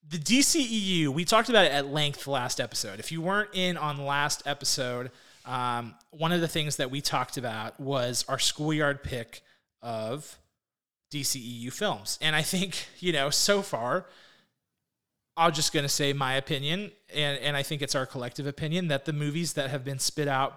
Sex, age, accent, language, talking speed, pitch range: male, 30-49, American, English, 185 wpm, 130-160 Hz